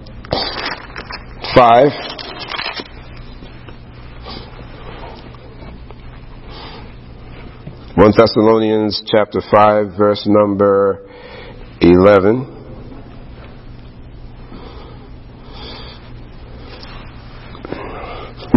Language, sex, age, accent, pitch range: English, male, 60-79, American, 100-120 Hz